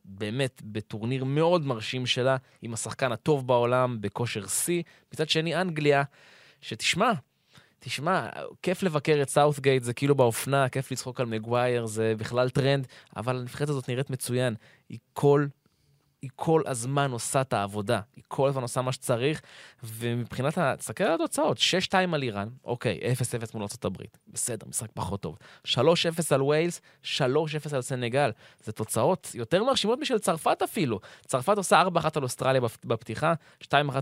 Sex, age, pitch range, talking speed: male, 20-39, 110-145 Hz, 150 wpm